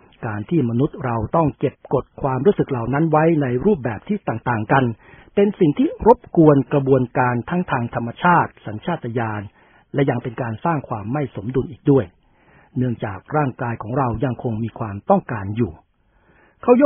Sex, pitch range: male, 120-160 Hz